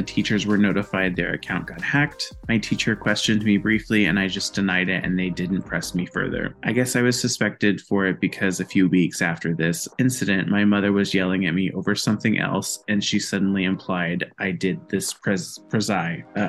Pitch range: 95-110 Hz